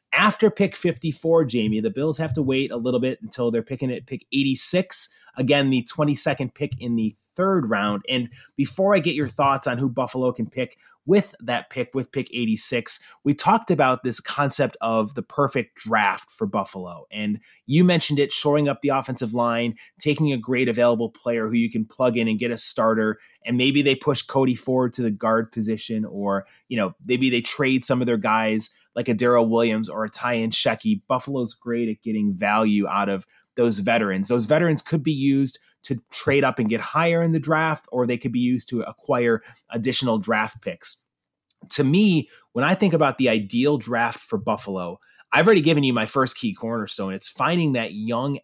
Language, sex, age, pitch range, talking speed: English, male, 30-49, 115-145 Hz, 200 wpm